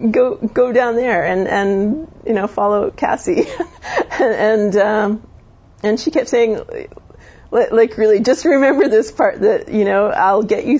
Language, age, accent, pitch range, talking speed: English, 40-59, American, 185-225 Hz, 165 wpm